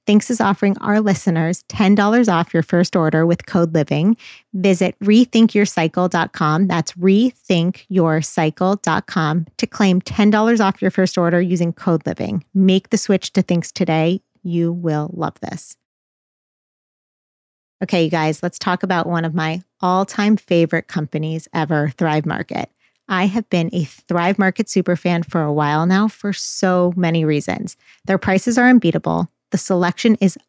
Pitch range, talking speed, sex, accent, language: 170-200 Hz, 150 wpm, female, American, English